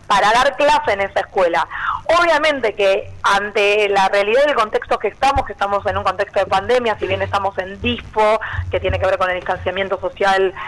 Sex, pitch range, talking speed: female, 195-270 Hz, 195 wpm